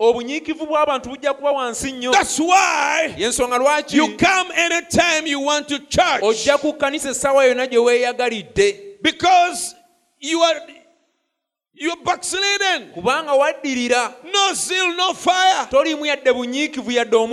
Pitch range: 215-310 Hz